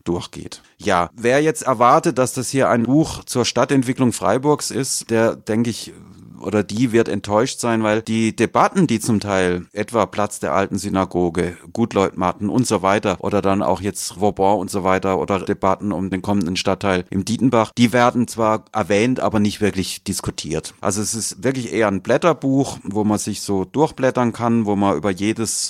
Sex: male